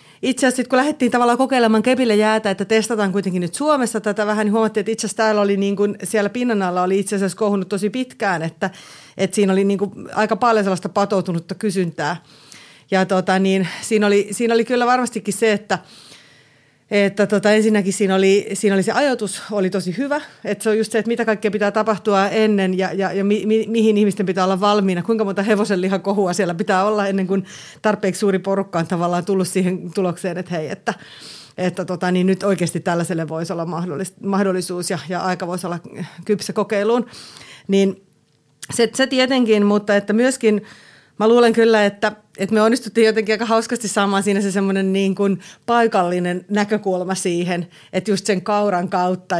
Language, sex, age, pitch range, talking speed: Finnish, female, 30-49, 185-215 Hz, 185 wpm